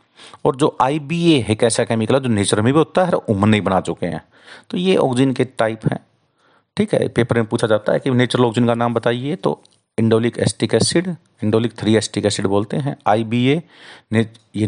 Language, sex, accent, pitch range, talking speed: Hindi, male, native, 110-140 Hz, 205 wpm